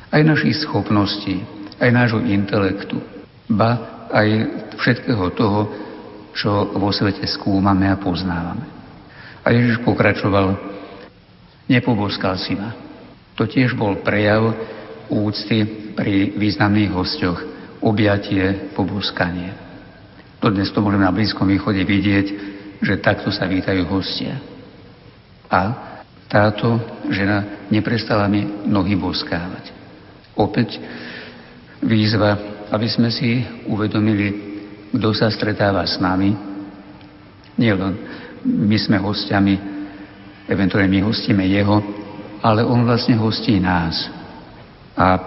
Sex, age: male, 60-79